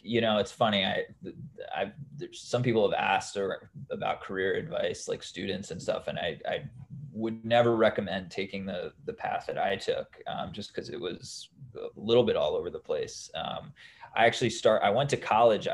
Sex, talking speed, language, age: male, 195 wpm, English, 20-39